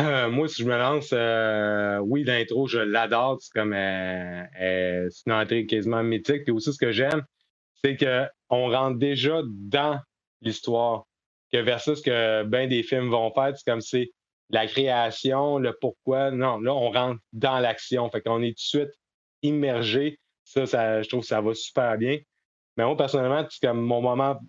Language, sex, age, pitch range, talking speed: French, male, 30-49, 110-135 Hz, 185 wpm